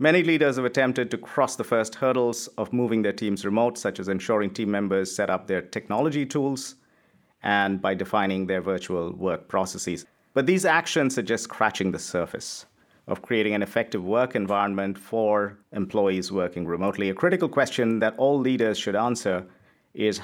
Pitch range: 95-125 Hz